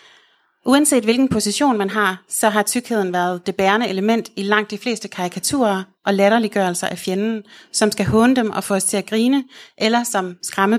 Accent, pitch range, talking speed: native, 195-225 Hz, 190 wpm